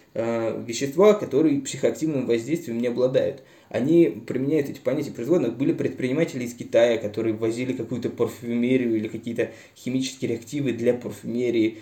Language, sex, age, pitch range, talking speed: Russian, male, 20-39, 110-130 Hz, 125 wpm